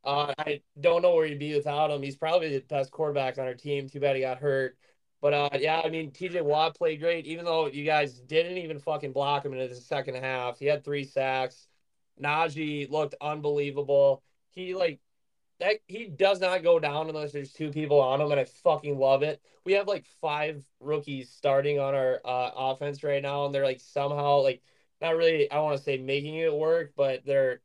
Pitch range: 135-155 Hz